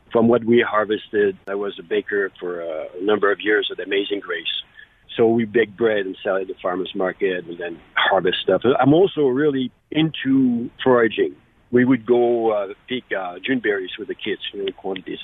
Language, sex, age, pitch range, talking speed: English, male, 50-69, 115-165 Hz, 200 wpm